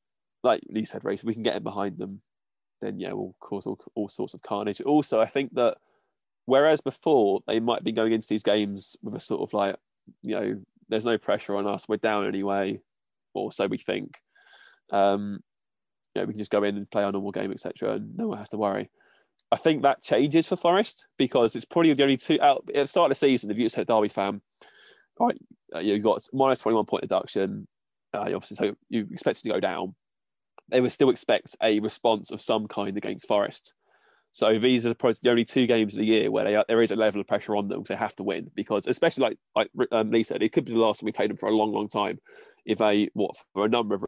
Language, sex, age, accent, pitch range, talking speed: English, male, 20-39, British, 105-125 Hz, 240 wpm